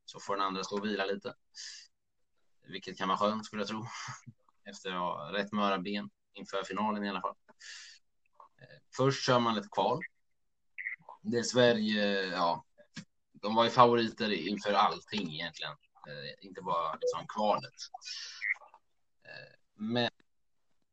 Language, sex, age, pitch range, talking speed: Swedish, male, 20-39, 95-120 Hz, 130 wpm